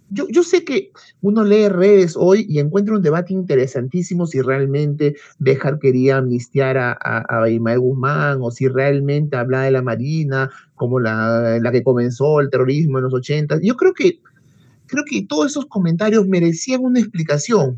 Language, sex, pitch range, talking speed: Spanish, male, 135-195 Hz, 170 wpm